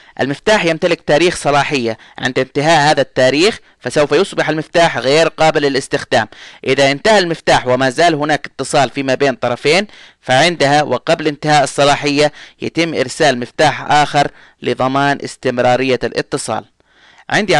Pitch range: 135-165 Hz